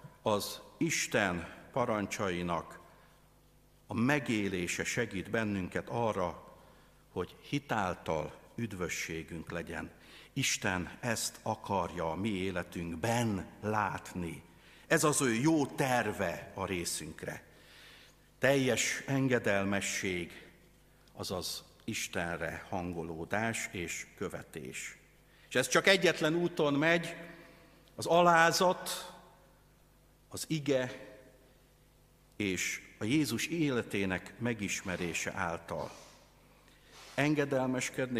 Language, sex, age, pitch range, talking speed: Hungarian, male, 60-79, 95-140 Hz, 80 wpm